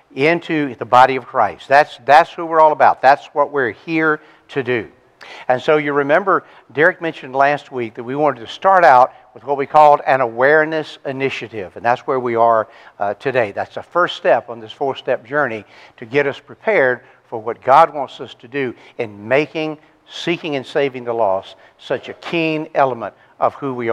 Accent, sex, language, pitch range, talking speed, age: American, male, English, 125-155 Hz, 195 wpm, 60-79